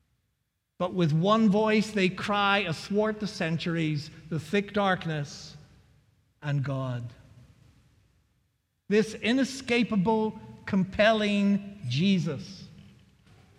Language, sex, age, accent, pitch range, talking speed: English, male, 50-69, American, 135-190 Hz, 80 wpm